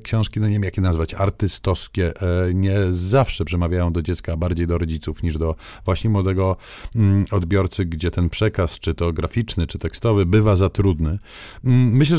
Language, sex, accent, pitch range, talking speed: Polish, male, native, 85-105 Hz, 165 wpm